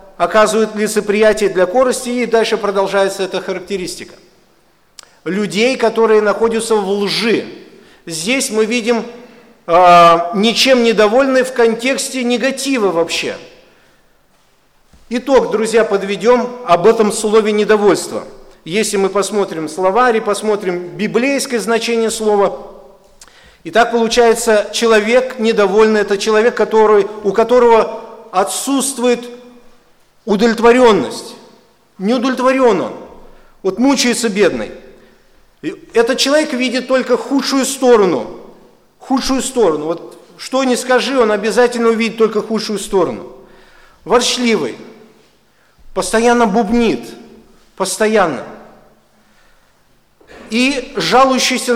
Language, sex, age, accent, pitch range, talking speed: Russian, male, 50-69, native, 200-245 Hz, 95 wpm